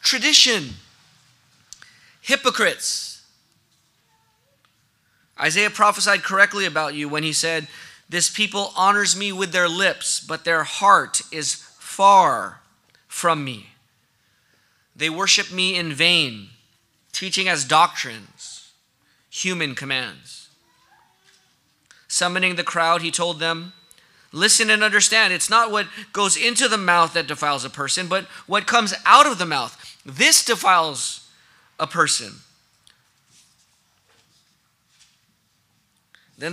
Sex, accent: male, American